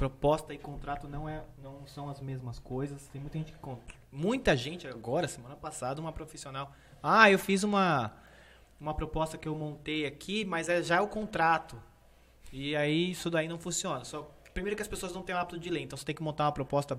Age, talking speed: 20-39, 215 wpm